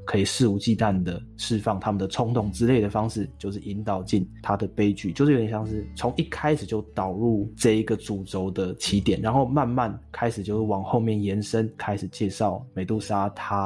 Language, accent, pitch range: Chinese, native, 100-120 Hz